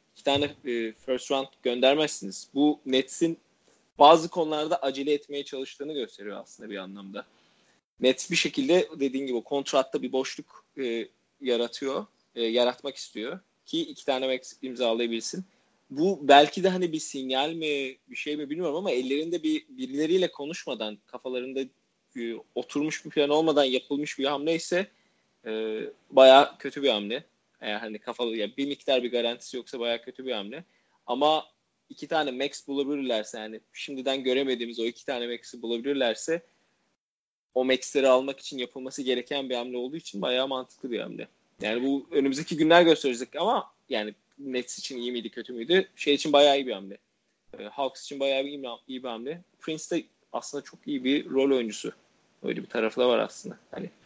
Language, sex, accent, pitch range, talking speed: Turkish, male, native, 125-150 Hz, 160 wpm